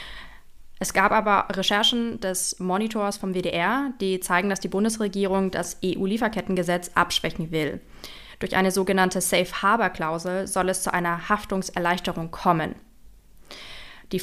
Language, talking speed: German, 120 wpm